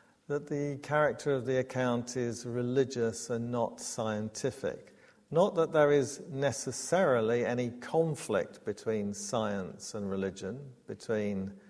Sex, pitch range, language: male, 115-140 Hz, English